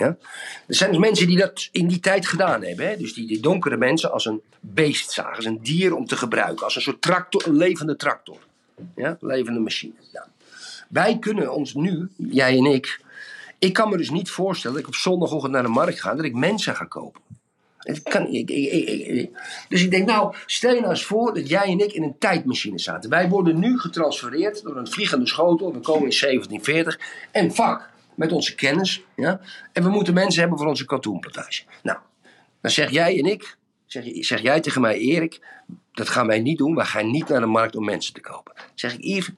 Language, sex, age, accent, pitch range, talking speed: Dutch, male, 50-69, Dutch, 125-190 Hz, 205 wpm